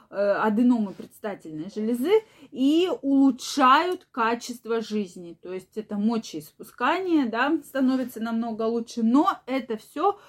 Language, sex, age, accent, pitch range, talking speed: Russian, female, 20-39, native, 220-270 Hz, 105 wpm